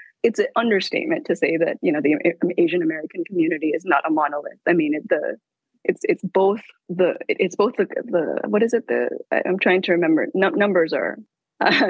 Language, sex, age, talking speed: English, female, 20-39, 200 wpm